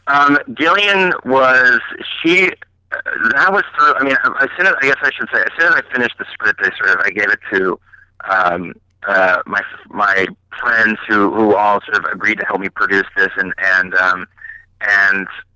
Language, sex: English, male